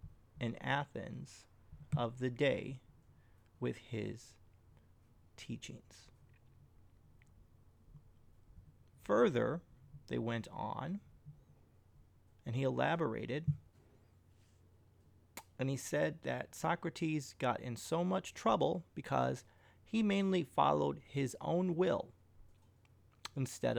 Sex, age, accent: male, 30-49, American